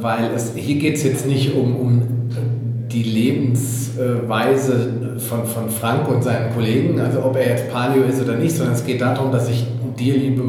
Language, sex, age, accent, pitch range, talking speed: German, male, 40-59, German, 120-135 Hz, 185 wpm